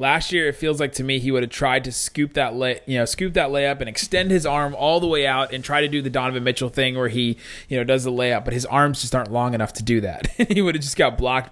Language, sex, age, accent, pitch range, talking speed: English, male, 20-39, American, 115-140 Hz, 305 wpm